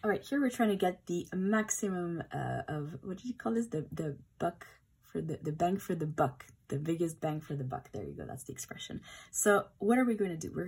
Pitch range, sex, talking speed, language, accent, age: 155-200 Hz, female, 255 wpm, English, Canadian, 20-39